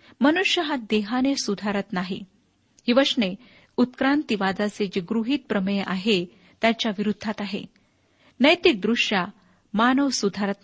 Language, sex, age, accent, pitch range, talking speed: Marathi, female, 50-69, native, 205-255 Hz, 115 wpm